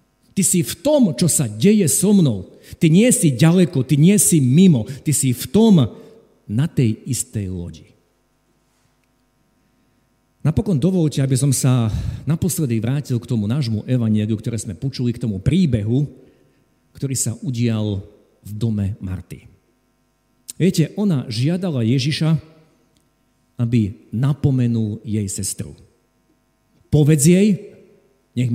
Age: 50-69